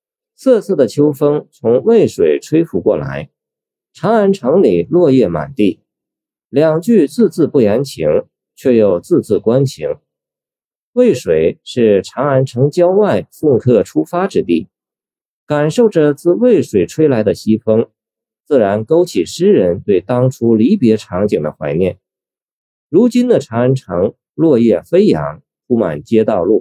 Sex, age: male, 50-69